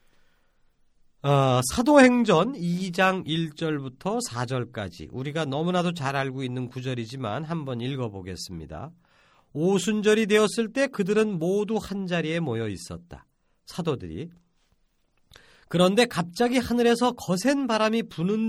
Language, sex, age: Korean, male, 40-59